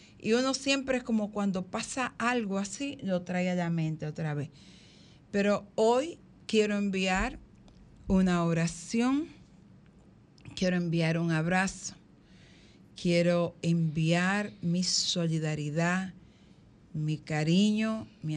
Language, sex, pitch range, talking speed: Spanish, female, 160-200 Hz, 110 wpm